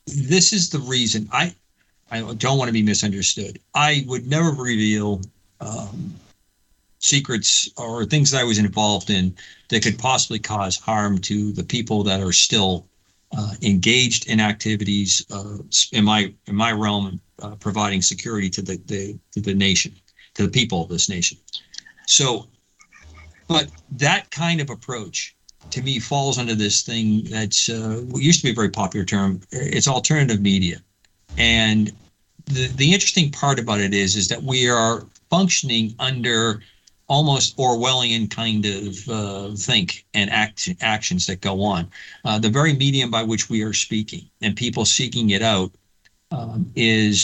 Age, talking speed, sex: 50-69, 160 wpm, male